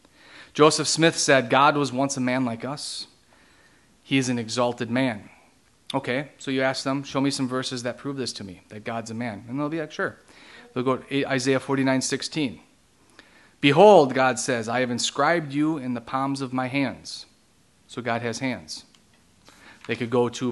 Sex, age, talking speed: male, 30-49, 190 wpm